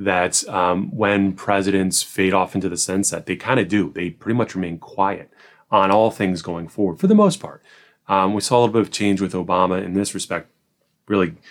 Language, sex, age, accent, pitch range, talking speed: English, male, 30-49, American, 95-115 Hz, 215 wpm